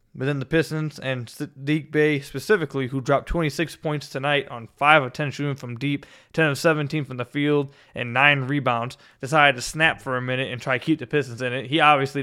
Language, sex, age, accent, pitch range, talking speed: English, male, 20-39, American, 125-150 Hz, 220 wpm